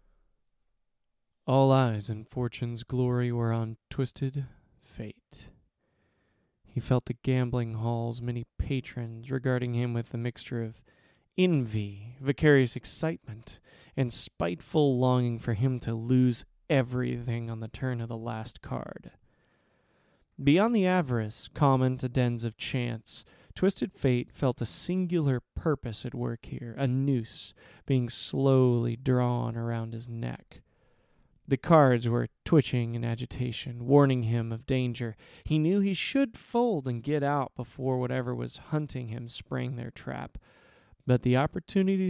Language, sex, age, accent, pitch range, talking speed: English, male, 20-39, American, 115-135 Hz, 135 wpm